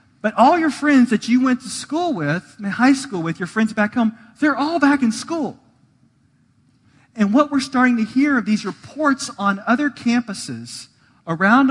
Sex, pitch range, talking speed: male, 145-230 Hz, 180 wpm